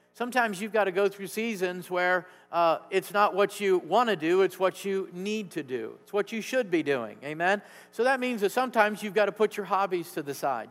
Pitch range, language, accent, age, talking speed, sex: 160-200 Hz, English, American, 50-69, 240 wpm, male